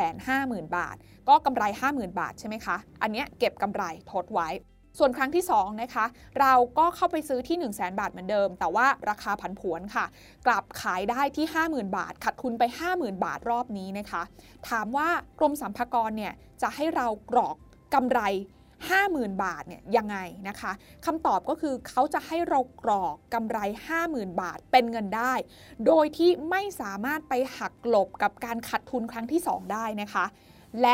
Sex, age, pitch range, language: female, 20-39, 210-290 Hz, Thai